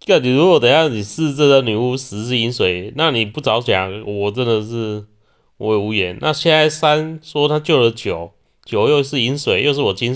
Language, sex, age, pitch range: Chinese, male, 20-39, 105-130 Hz